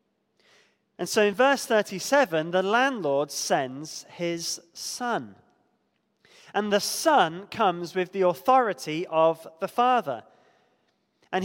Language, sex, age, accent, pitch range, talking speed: English, male, 20-39, British, 175-220 Hz, 110 wpm